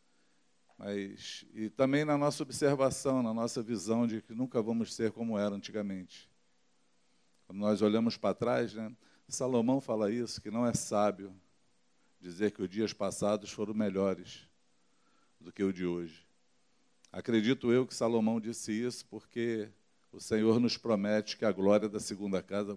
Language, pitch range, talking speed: Portuguese, 90-120 Hz, 155 wpm